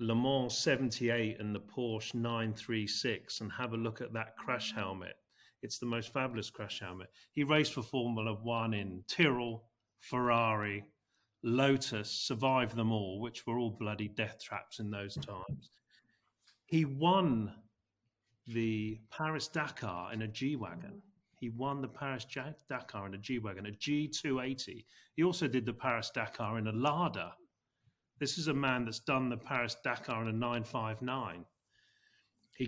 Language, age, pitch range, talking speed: English, 40-59, 105-130 Hz, 150 wpm